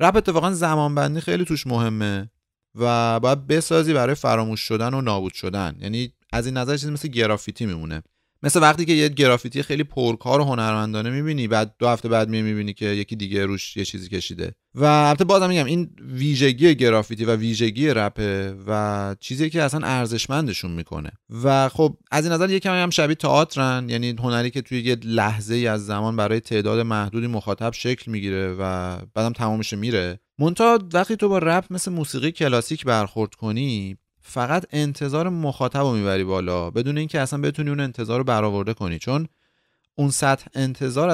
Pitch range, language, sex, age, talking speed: 110-150 Hz, Persian, male, 30-49, 170 wpm